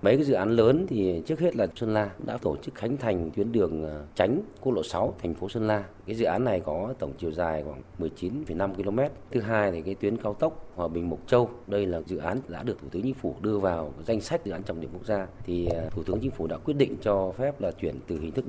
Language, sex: Vietnamese, male